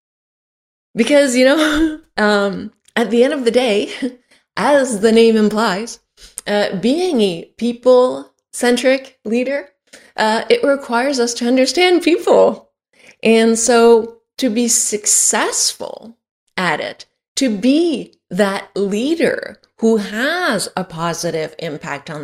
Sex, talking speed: female, 120 wpm